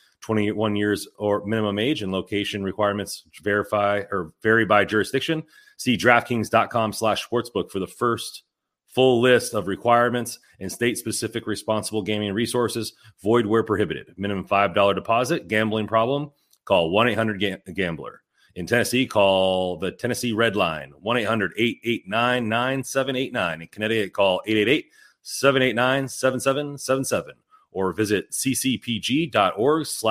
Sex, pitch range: male, 105-130 Hz